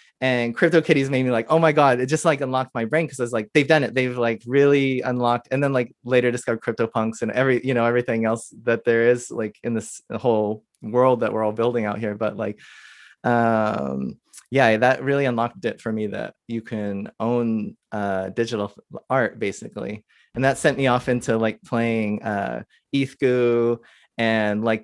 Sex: male